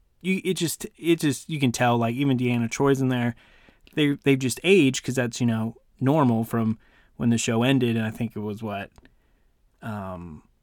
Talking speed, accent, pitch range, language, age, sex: 200 wpm, American, 115-135 Hz, English, 20-39, male